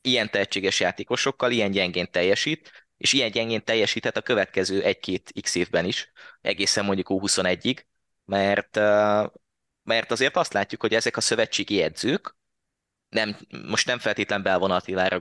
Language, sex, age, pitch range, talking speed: Hungarian, male, 20-39, 95-110 Hz, 140 wpm